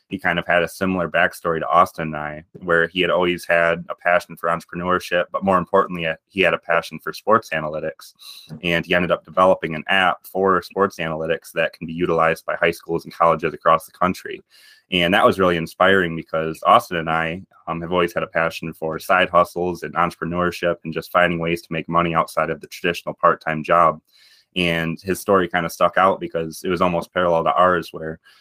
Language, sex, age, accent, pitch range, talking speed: English, male, 20-39, American, 80-90 Hz, 210 wpm